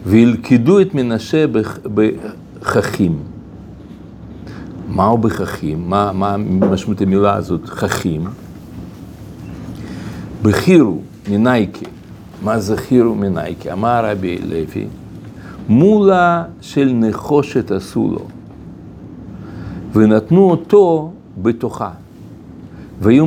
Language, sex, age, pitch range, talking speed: Hebrew, male, 60-79, 100-140 Hz, 75 wpm